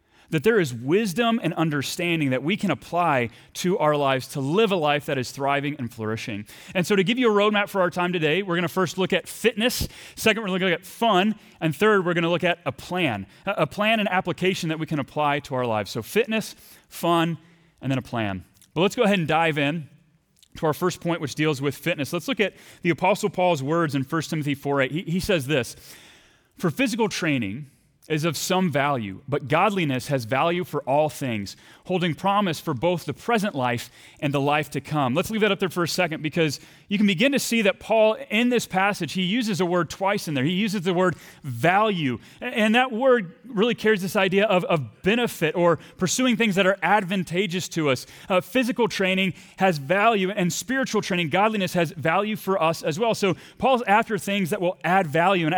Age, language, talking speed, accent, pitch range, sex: 30-49, English, 215 wpm, American, 150-200 Hz, male